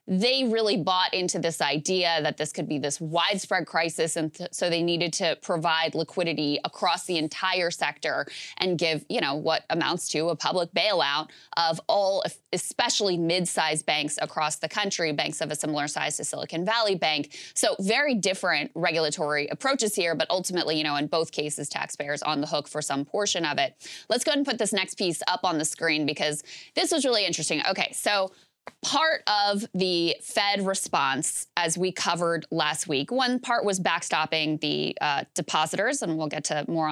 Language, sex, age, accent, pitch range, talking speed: English, female, 20-39, American, 160-225 Hz, 185 wpm